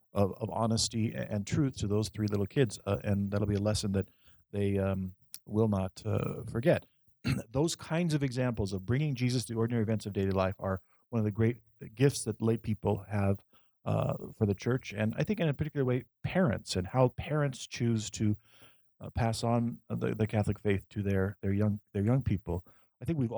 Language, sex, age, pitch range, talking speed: English, male, 40-59, 105-120 Hz, 205 wpm